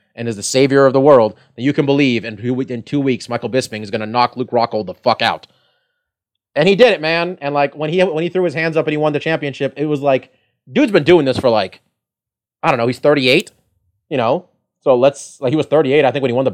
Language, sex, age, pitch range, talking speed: English, male, 30-49, 115-145 Hz, 270 wpm